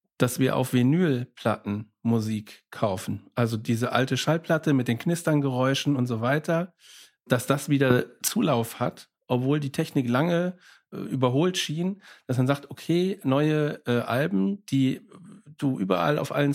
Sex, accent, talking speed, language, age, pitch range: male, German, 145 wpm, German, 40-59, 120-150 Hz